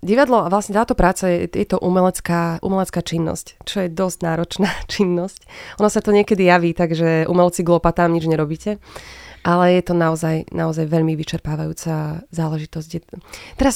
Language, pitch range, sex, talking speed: Slovak, 165-190 Hz, female, 155 wpm